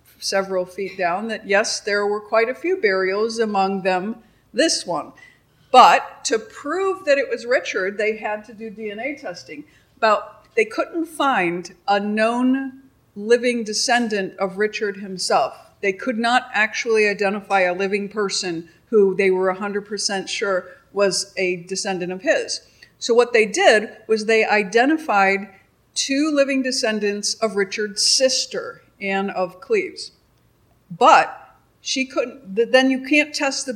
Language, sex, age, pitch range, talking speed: English, female, 50-69, 195-245 Hz, 145 wpm